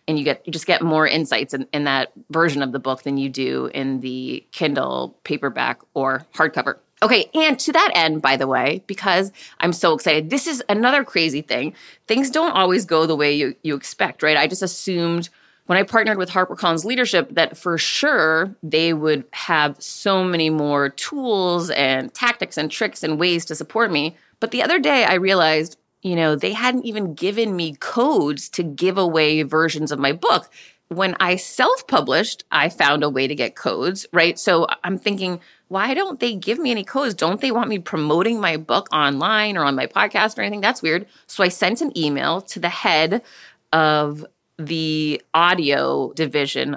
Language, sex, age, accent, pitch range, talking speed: English, female, 30-49, American, 155-215 Hz, 190 wpm